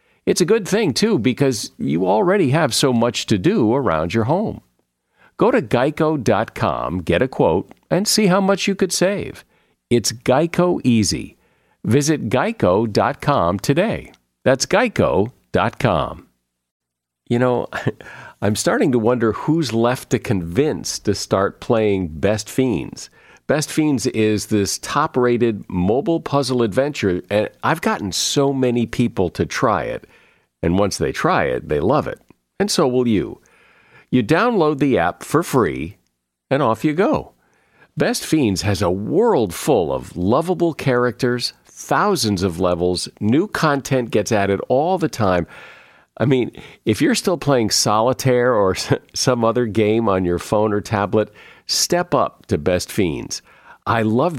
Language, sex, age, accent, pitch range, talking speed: English, male, 50-69, American, 100-135 Hz, 145 wpm